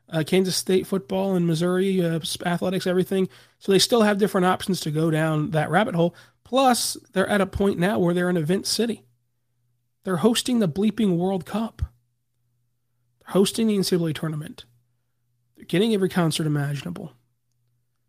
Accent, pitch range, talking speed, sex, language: American, 140-195 Hz, 160 wpm, male, English